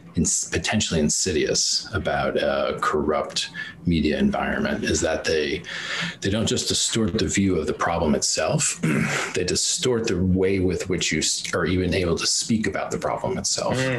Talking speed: 155 wpm